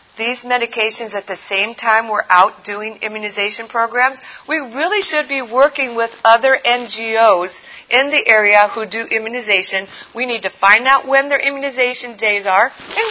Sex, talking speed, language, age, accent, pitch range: female, 165 wpm, English, 50-69, American, 200-260 Hz